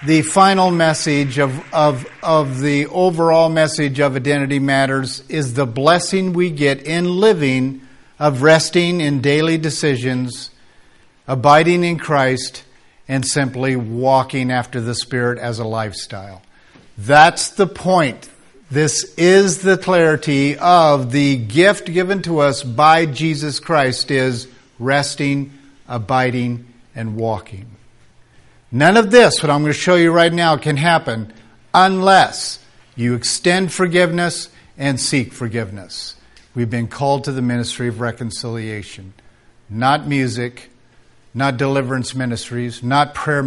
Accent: American